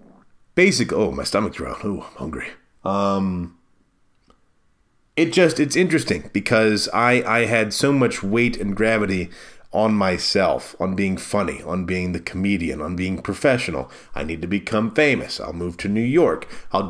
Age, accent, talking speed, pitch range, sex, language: 30-49, American, 160 wpm, 90-115 Hz, male, English